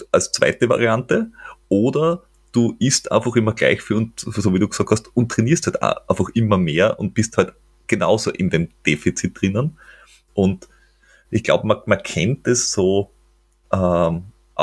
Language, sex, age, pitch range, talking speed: German, male, 30-49, 85-115 Hz, 165 wpm